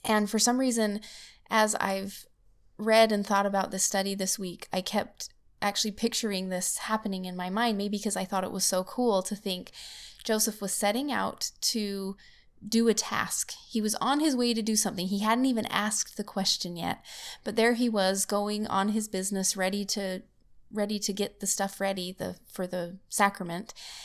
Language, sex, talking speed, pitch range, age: English, female, 190 wpm, 195-225 Hz, 20-39